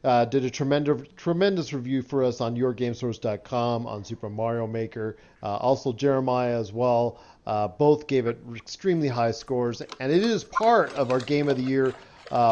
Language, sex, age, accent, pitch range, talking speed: English, male, 50-69, American, 125-170 Hz, 175 wpm